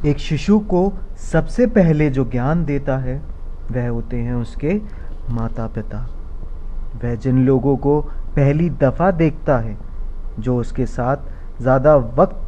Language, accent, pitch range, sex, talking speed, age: Hindi, native, 120-150 Hz, male, 135 wpm, 30-49